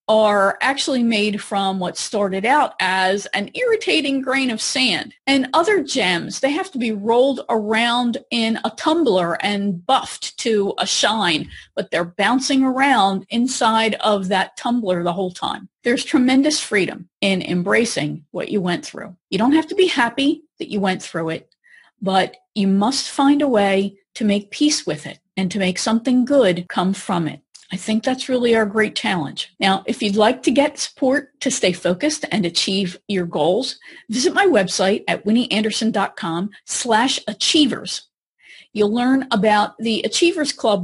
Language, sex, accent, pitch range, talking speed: English, female, American, 195-270 Hz, 165 wpm